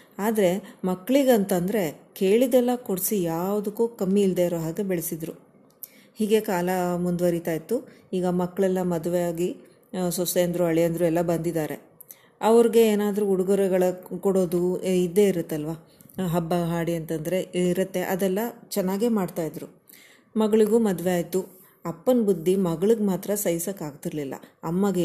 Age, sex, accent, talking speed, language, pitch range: 30-49, female, native, 110 wpm, Kannada, 170-195 Hz